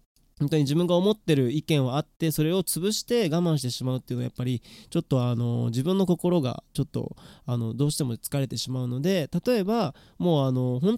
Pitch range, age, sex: 130-175 Hz, 20-39, male